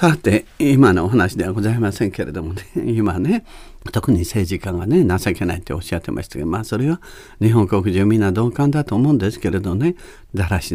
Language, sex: Japanese, male